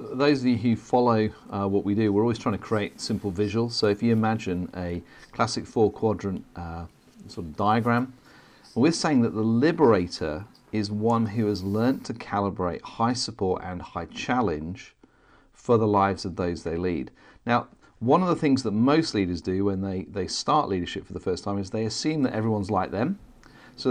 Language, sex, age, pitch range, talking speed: English, male, 40-59, 95-120 Hz, 195 wpm